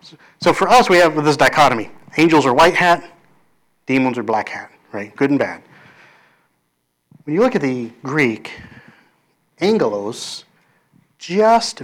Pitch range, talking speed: 125-170 Hz, 135 wpm